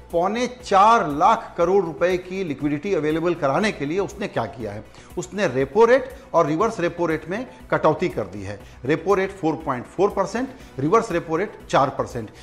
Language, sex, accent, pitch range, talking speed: Hindi, male, native, 160-215 Hz, 175 wpm